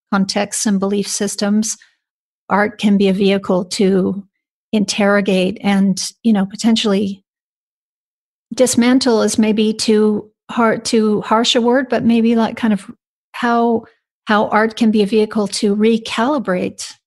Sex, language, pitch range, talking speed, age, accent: female, English, 195-220 Hz, 135 wpm, 40-59, American